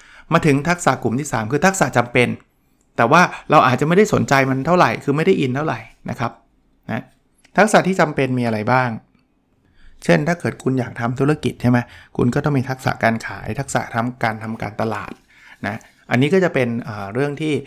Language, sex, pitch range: Thai, male, 115-145 Hz